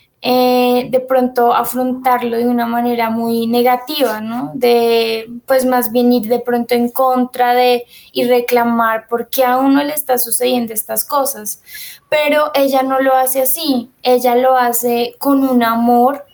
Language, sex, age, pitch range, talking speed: Spanish, female, 10-29, 235-255 Hz, 160 wpm